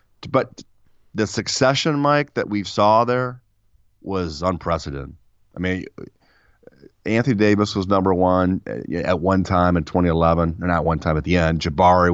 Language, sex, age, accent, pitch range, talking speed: English, male, 30-49, American, 85-105 Hz, 150 wpm